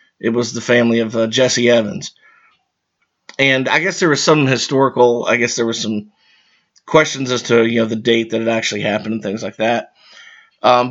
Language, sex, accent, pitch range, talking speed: English, male, American, 115-135 Hz, 200 wpm